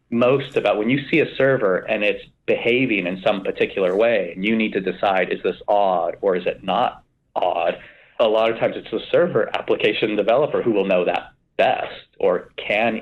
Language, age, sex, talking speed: English, 40-59, male, 200 wpm